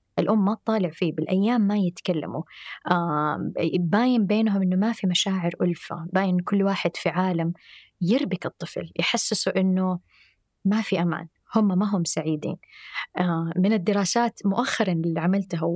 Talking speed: 140 wpm